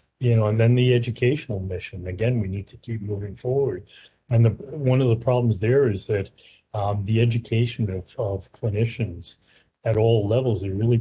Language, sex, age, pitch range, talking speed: English, male, 40-59, 95-115 Hz, 185 wpm